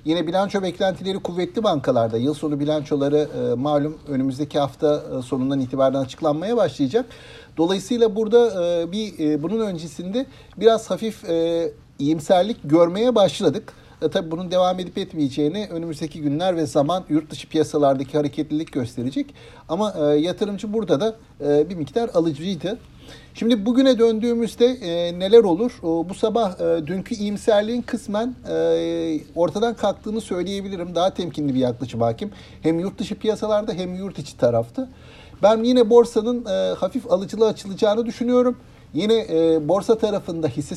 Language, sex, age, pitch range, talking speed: Turkish, male, 60-79, 150-215 Hz, 135 wpm